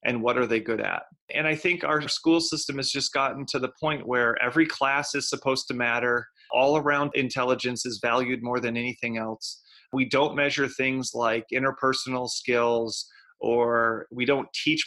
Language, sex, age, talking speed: English, male, 30-49, 180 wpm